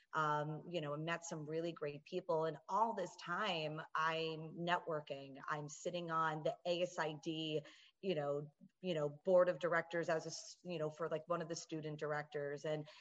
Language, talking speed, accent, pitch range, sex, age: English, 180 wpm, American, 150-170 Hz, female, 30-49